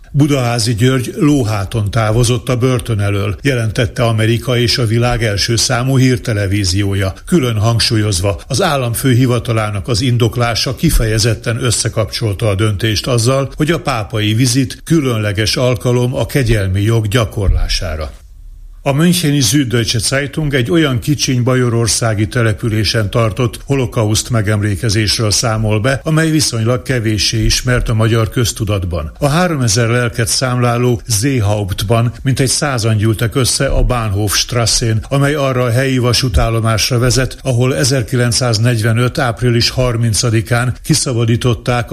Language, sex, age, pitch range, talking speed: Hungarian, male, 60-79, 110-130 Hz, 115 wpm